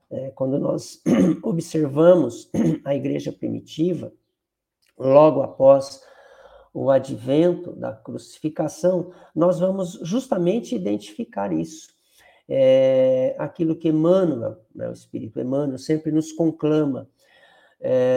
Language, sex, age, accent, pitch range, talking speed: Portuguese, male, 50-69, Brazilian, 140-185 Hz, 100 wpm